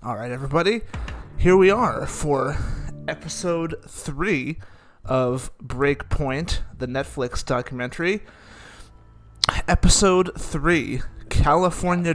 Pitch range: 125-165 Hz